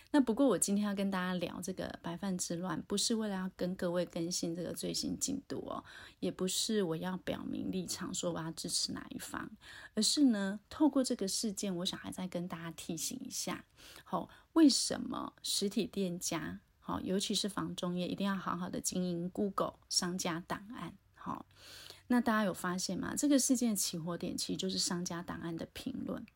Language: Chinese